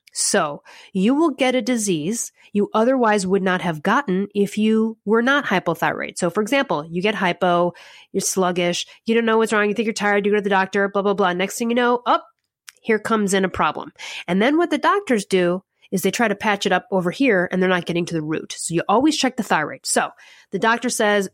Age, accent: 30-49, American